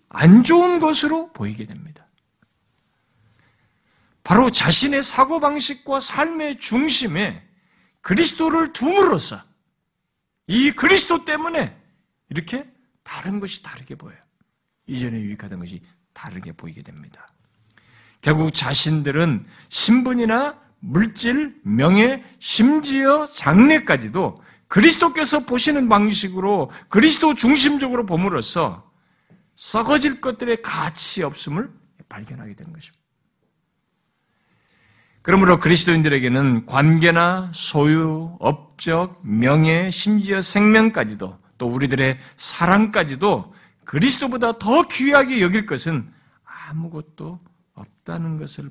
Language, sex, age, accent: Korean, male, 50-69, native